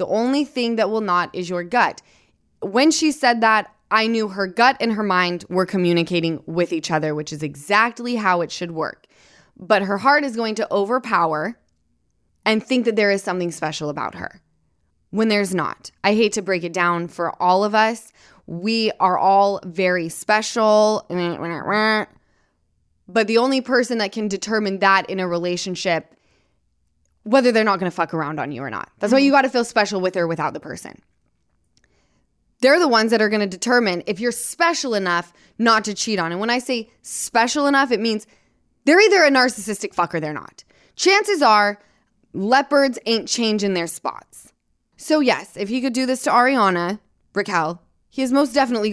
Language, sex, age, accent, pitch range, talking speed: English, female, 20-39, American, 175-230 Hz, 190 wpm